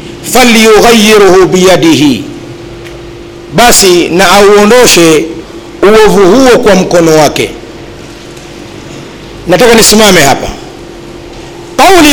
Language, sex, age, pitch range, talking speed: Swahili, male, 50-69, 195-270 Hz, 60 wpm